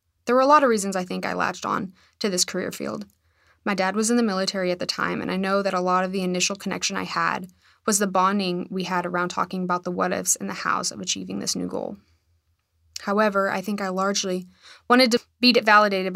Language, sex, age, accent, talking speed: English, female, 20-39, American, 235 wpm